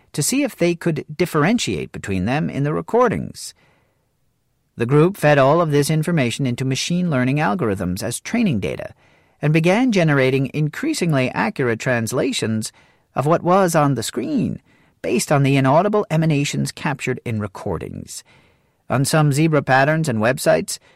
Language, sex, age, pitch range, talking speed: English, male, 40-59, 120-165 Hz, 145 wpm